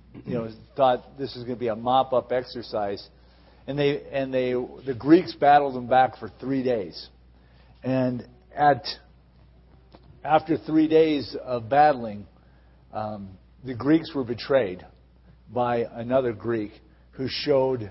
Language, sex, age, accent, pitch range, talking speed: English, male, 50-69, American, 80-130 Hz, 135 wpm